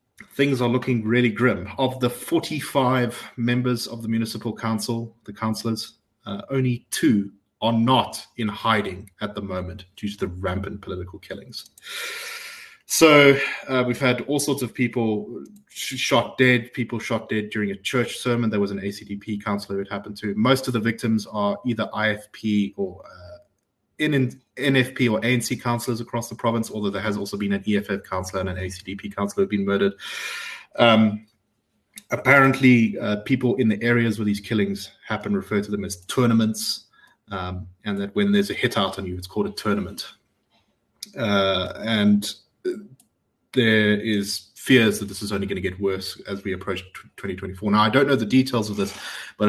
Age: 20-39